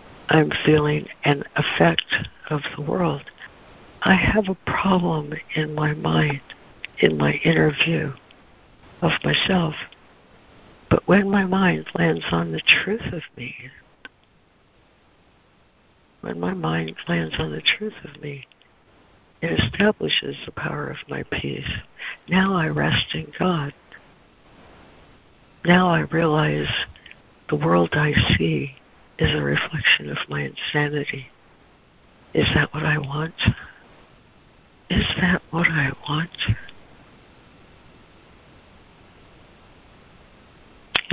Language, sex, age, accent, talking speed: English, female, 60-79, American, 110 wpm